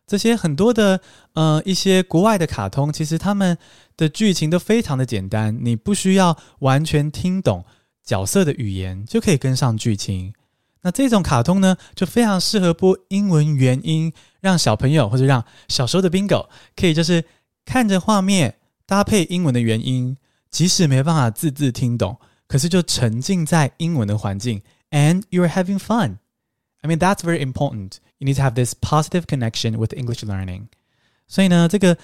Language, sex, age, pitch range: Chinese, male, 20-39, 115-180 Hz